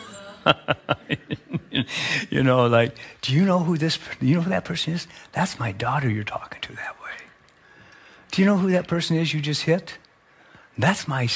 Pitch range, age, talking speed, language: 125-170 Hz, 50-69, 185 wpm, English